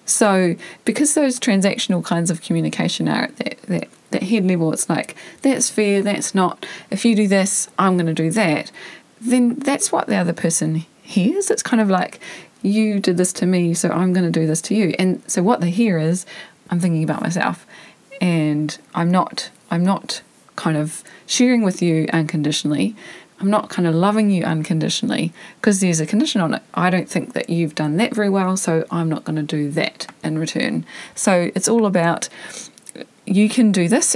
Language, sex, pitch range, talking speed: English, female, 165-210 Hz, 200 wpm